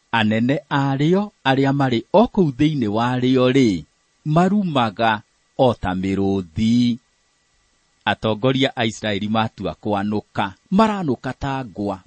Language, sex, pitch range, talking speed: English, male, 105-160 Hz, 75 wpm